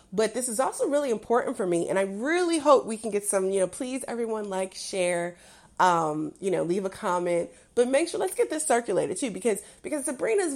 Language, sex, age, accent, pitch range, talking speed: English, female, 30-49, American, 185-245 Hz, 220 wpm